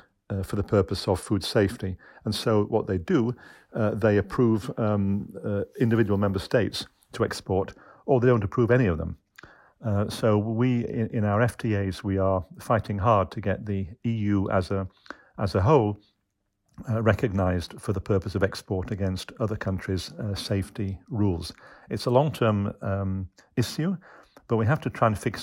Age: 50-69